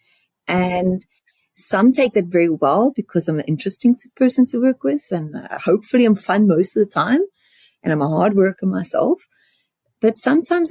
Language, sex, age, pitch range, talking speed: English, female, 30-49, 185-250 Hz, 175 wpm